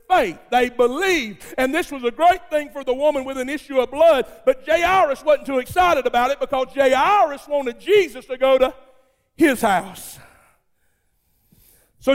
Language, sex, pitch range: English, male, 175-280 Hz